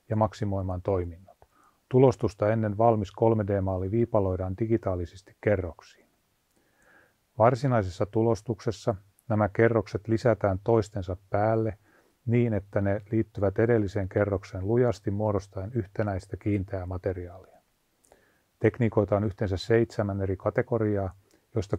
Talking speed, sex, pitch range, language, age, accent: 95 wpm, male, 95-115 Hz, Finnish, 30-49, native